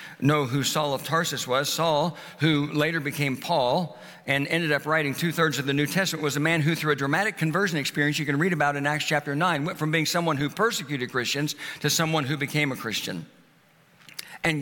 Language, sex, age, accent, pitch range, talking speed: English, male, 60-79, American, 145-185 Hz, 210 wpm